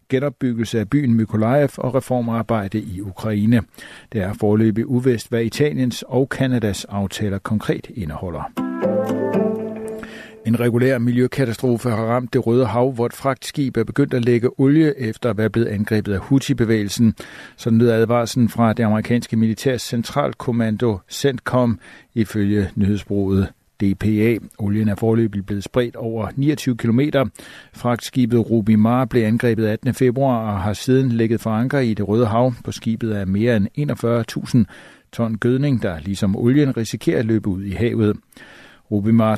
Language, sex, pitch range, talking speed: Danish, male, 110-125 Hz, 150 wpm